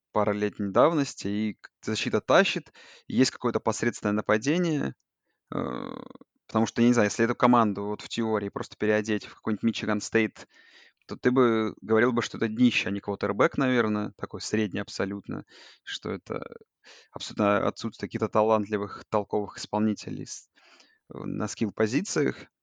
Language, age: Russian, 20-39